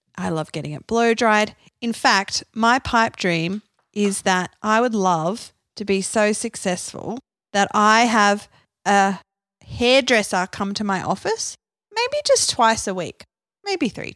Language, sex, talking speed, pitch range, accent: English, female, 155 wpm, 180-240 Hz, Australian